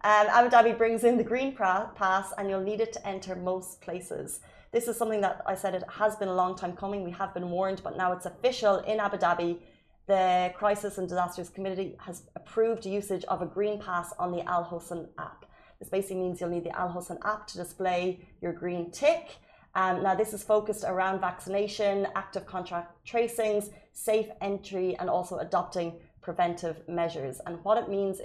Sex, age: female, 30-49